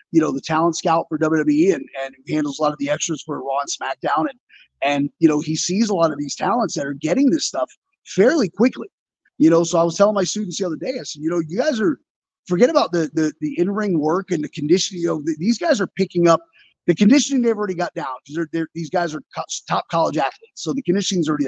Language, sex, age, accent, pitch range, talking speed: English, male, 30-49, American, 160-200 Hz, 255 wpm